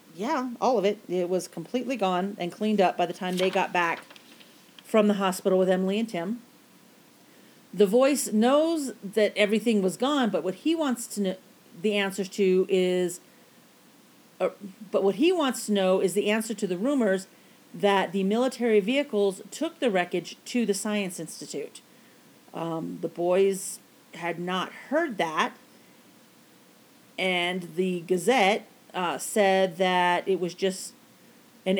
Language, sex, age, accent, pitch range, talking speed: English, female, 40-59, American, 185-240 Hz, 155 wpm